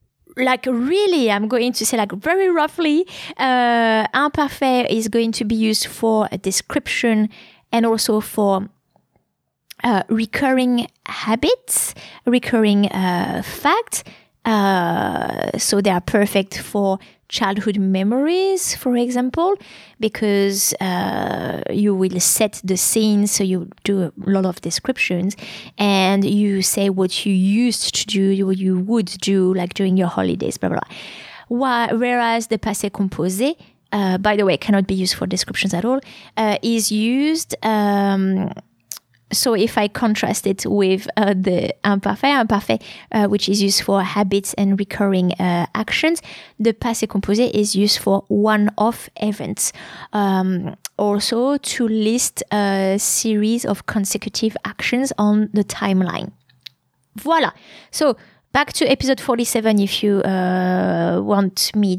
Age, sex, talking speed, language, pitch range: 20-39, female, 135 wpm, English, 195-235 Hz